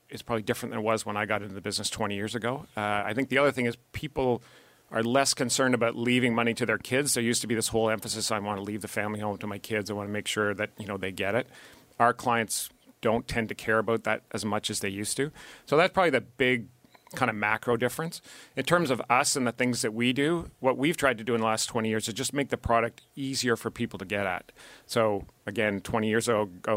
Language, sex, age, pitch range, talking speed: English, male, 40-59, 105-120 Hz, 265 wpm